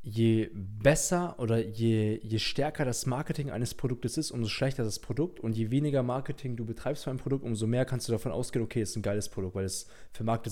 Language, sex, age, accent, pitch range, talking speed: German, male, 20-39, German, 105-125 Hz, 215 wpm